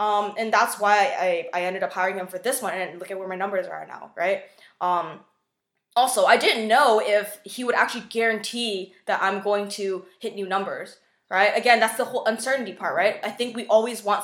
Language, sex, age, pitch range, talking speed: English, female, 20-39, 190-230 Hz, 220 wpm